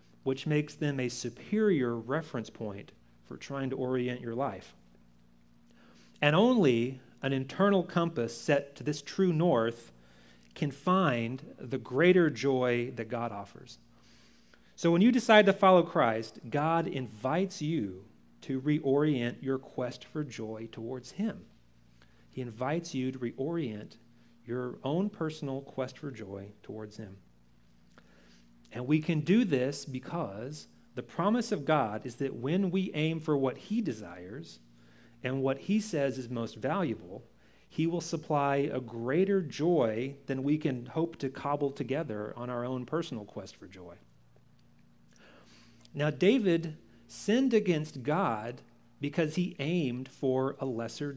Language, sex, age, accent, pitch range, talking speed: English, male, 40-59, American, 115-160 Hz, 140 wpm